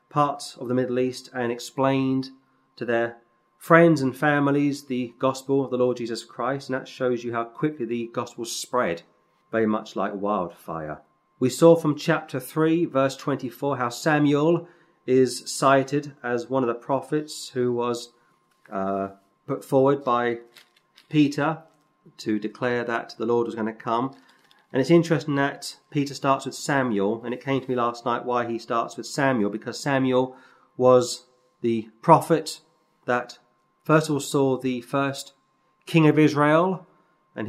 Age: 30-49